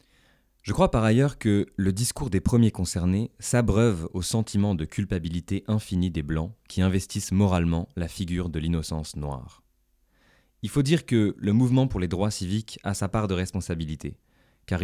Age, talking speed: 20-39, 170 wpm